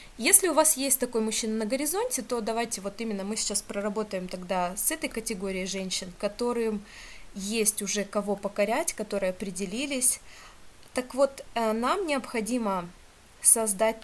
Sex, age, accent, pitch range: female, 20-39, native, 200-245 Hz